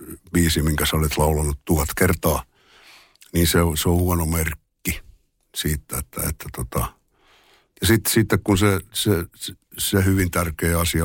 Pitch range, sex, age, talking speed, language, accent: 80-95 Hz, male, 60-79, 145 wpm, Finnish, native